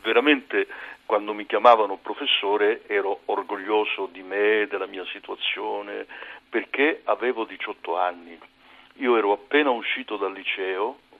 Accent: native